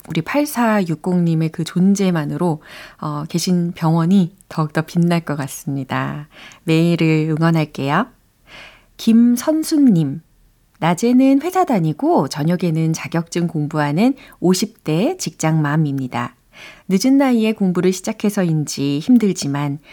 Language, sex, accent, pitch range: Korean, female, native, 150-200 Hz